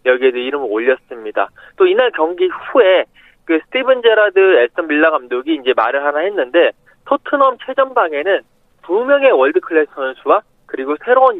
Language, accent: Korean, native